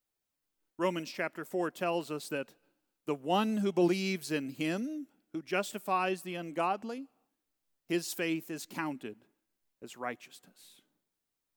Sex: male